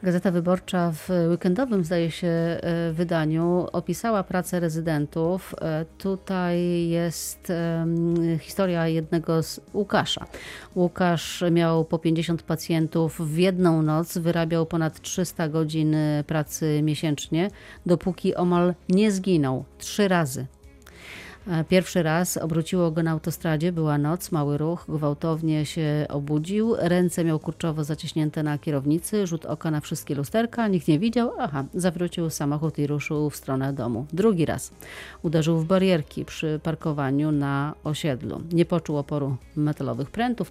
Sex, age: female, 40-59